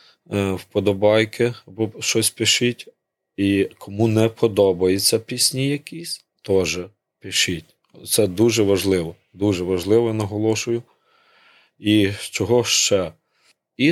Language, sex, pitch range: Ukrainian, male, 95-115 Hz